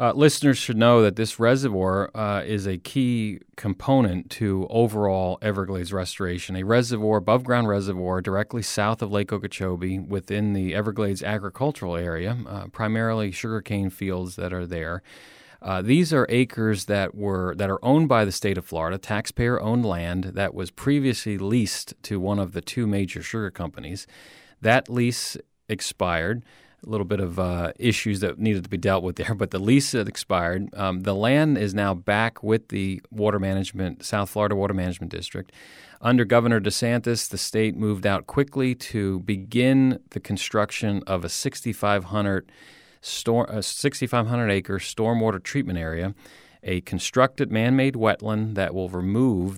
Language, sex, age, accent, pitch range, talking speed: English, male, 30-49, American, 95-115 Hz, 155 wpm